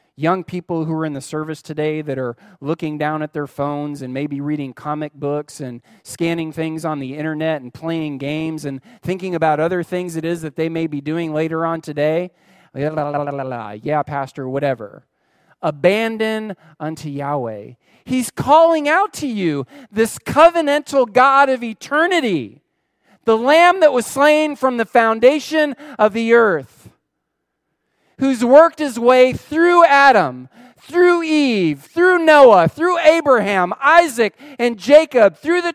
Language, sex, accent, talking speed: English, male, American, 160 wpm